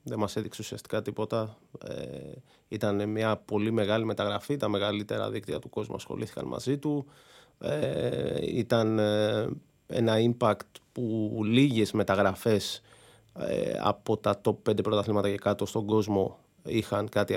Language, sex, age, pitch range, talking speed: Greek, male, 30-49, 105-140 Hz, 125 wpm